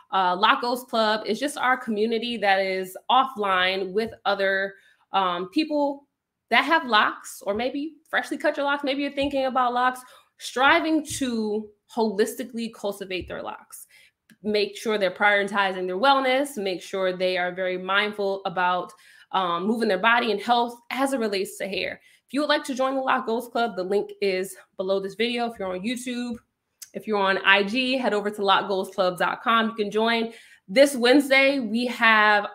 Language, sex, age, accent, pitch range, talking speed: English, female, 20-39, American, 195-255 Hz, 175 wpm